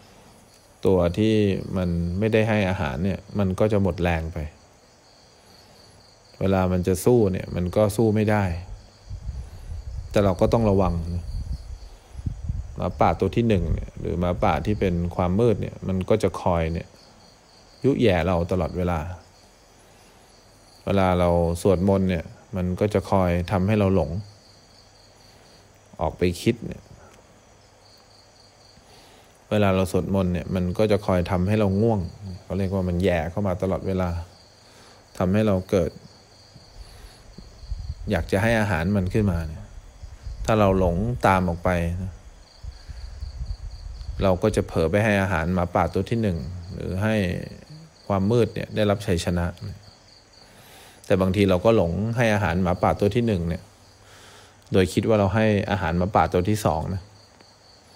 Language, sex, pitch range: English, male, 90-105 Hz